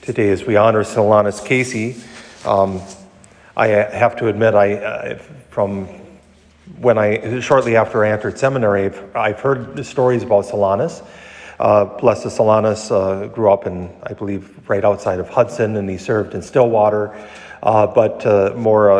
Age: 40-59